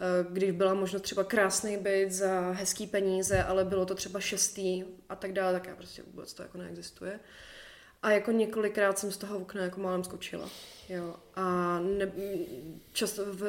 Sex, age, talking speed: female, 20-39, 160 wpm